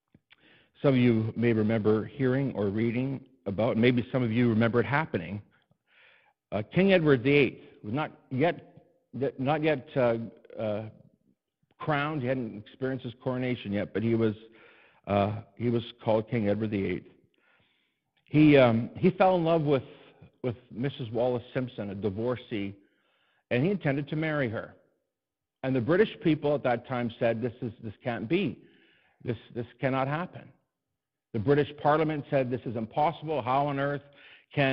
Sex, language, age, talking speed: male, English, 50-69, 155 wpm